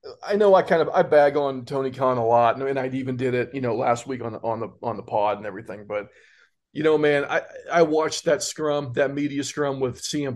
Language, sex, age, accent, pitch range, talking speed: English, male, 40-59, American, 125-160 Hz, 255 wpm